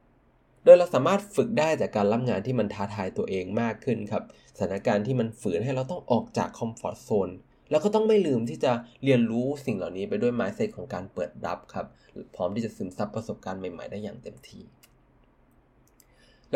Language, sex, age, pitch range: Thai, male, 20-39, 105-140 Hz